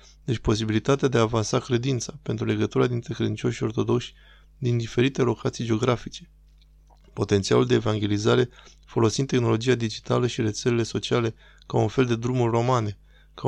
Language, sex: Romanian, male